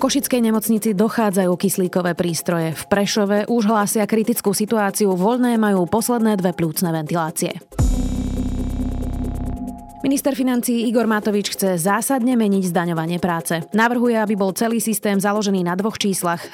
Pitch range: 170-225 Hz